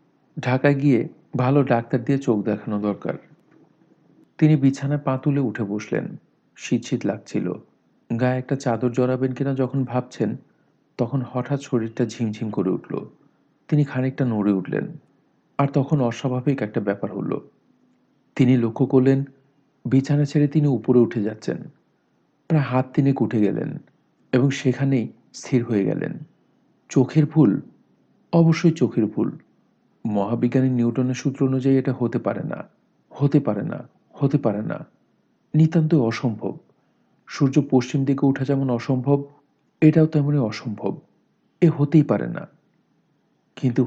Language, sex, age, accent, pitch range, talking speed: Bengali, male, 50-69, native, 120-140 Hz, 125 wpm